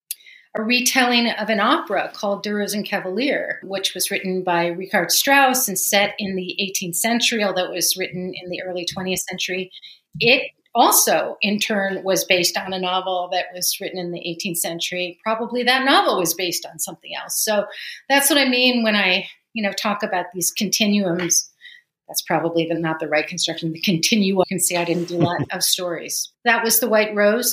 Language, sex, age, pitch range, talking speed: English, female, 40-59, 175-210 Hz, 195 wpm